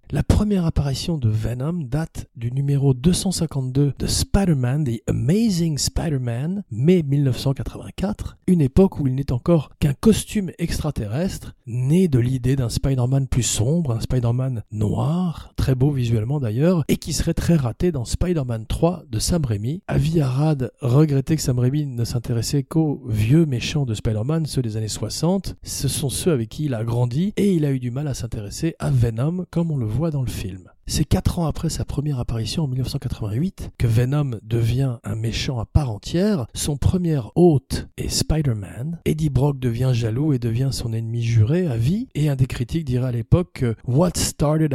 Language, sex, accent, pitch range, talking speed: French, male, French, 120-155 Hz, 180 wpm